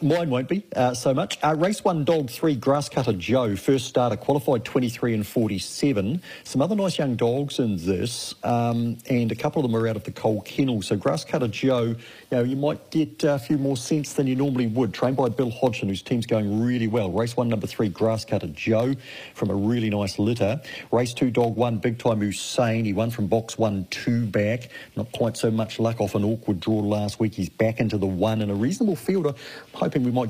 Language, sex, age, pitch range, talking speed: English, male, 40-59, 100-125 Hz, 230 wpm